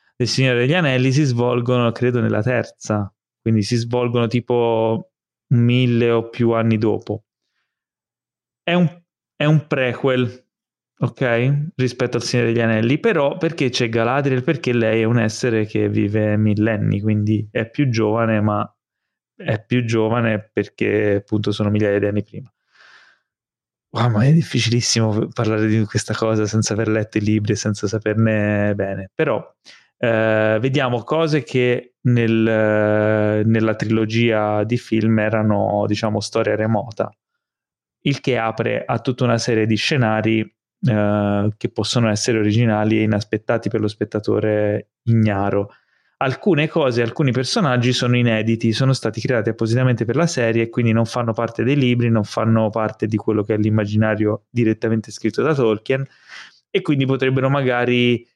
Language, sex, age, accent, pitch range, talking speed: Italian, male, 20-39, native, 110-125 Hz, 150 wpm